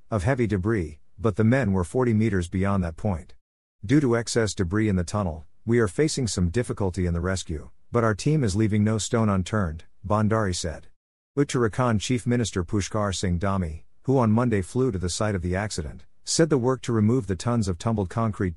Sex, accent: male, American